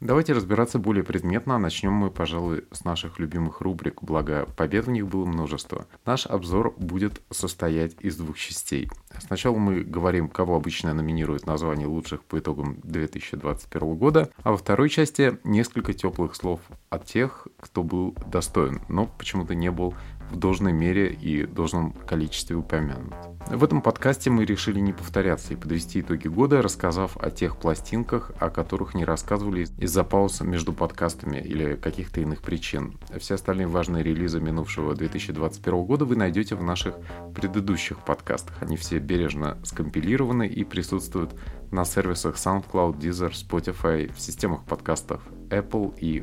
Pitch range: 80-100 Hz